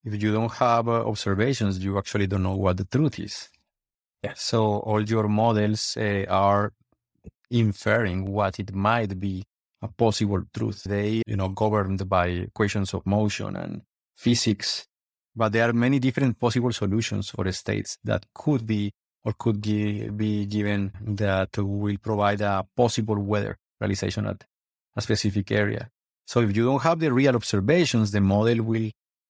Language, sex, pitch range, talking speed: English, male, 100-115 Hz, 155 wpm